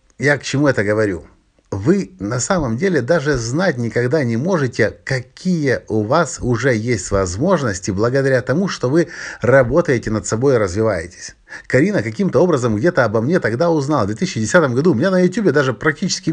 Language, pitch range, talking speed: Russian, 105-155 Hz, 170 wpm